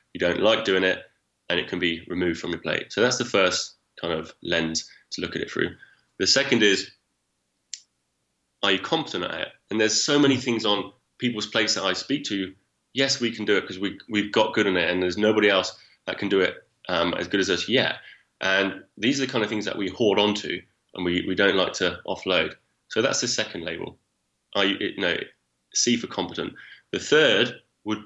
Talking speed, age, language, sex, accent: 220 wpm, 20-39, English, male, British